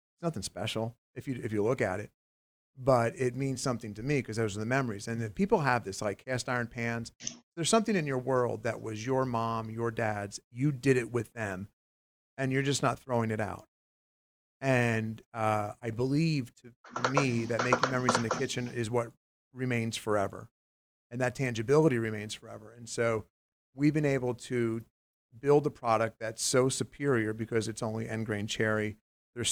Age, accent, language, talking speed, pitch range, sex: 40-59, American, English, 190 wpm, 100-125 Hz, male